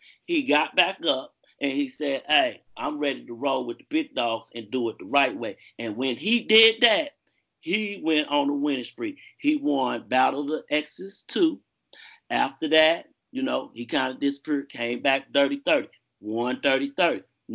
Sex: male